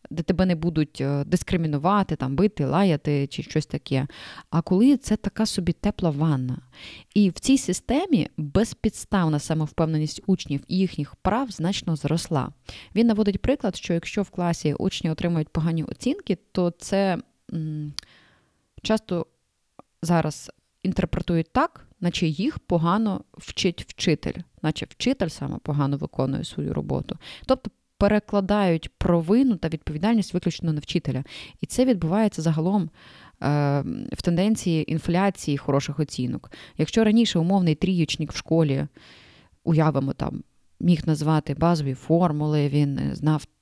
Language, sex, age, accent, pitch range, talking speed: Ukrainian, female, 20-39, native, 145-190 Hz, 125 wpm